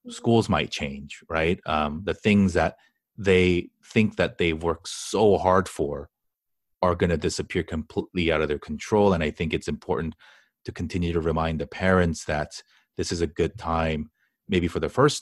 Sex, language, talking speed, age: male, English, 180 wpm, 30-49